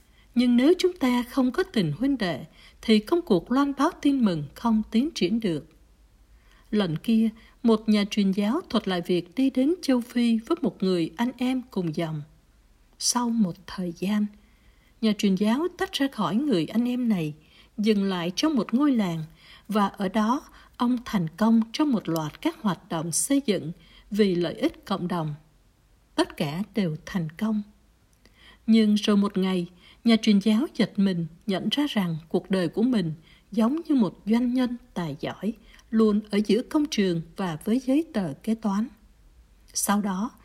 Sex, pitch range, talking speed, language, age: female, 185-250 Hz, 180 wpm, Vietnamese, 60-79